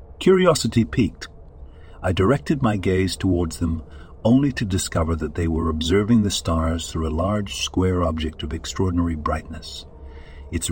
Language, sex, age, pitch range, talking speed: English, male, 60-79, 80-100 Hz, 145 wpm